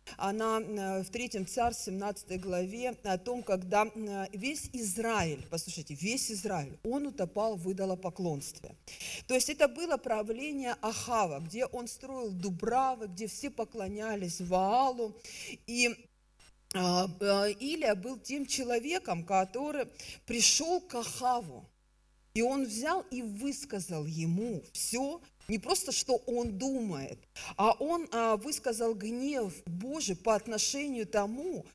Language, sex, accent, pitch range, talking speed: Russian, female, native, 195-260 Hz, 115 wpm